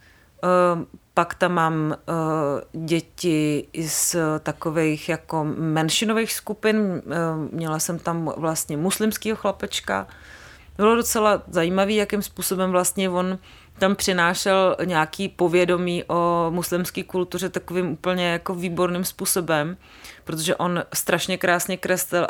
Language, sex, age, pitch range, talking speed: English, female, 30-49, 165-190 Hz, 105 wpm